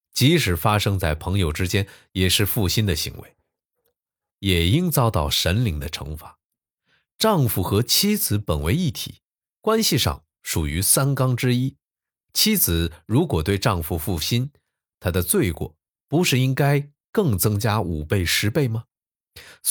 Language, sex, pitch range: Chinese, male, 90-135 Hz